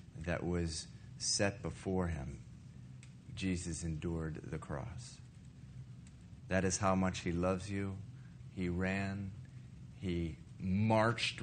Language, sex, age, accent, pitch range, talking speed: English, male, 40-59, American, 95-125 Hz, 105 wpm